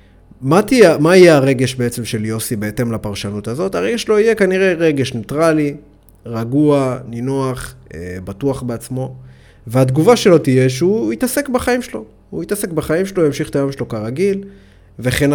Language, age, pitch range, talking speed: Hebrew, 20-39, 115-160 Hz, 150 wpm